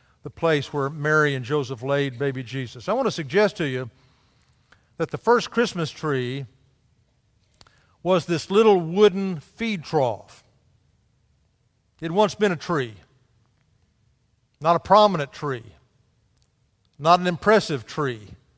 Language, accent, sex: English, American, male